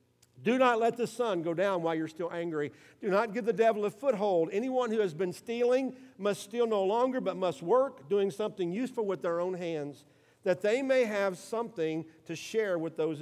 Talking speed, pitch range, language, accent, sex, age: 210 wpm, 165-225 Hz, English, American, male, 50-69